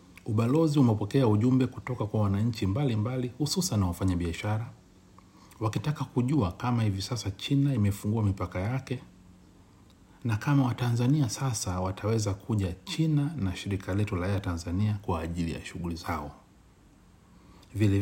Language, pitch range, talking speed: Swahili, 95-120 Hz, 130 wpm